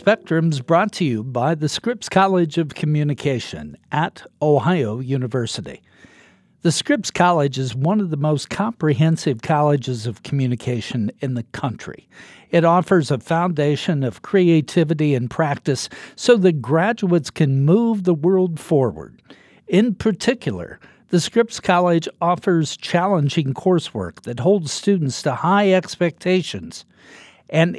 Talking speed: 125 wpm